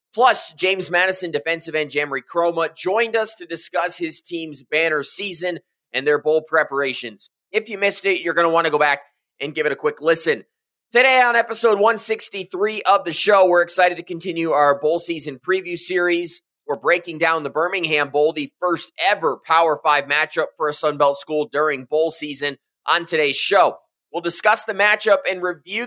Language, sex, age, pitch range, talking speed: English, male, 20-39, 155-200 Hz, 185 wpm